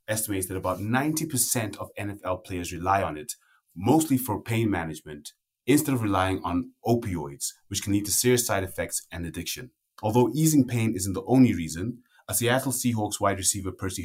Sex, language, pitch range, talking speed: male, English, 90-110 Hz, 175 wpm